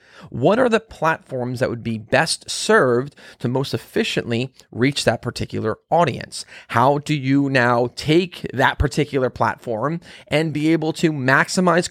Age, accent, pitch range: 30-49, American, 120-165 Hz